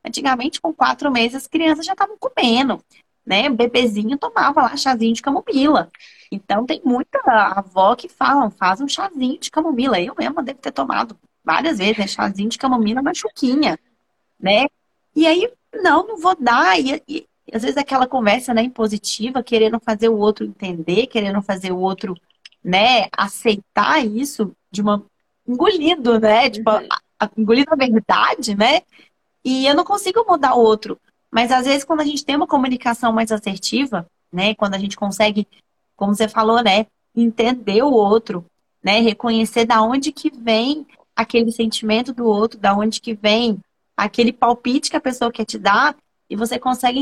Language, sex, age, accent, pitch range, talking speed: Portuguese, female, 20-39, Brazilian, 215-275 Hz, 170 wpm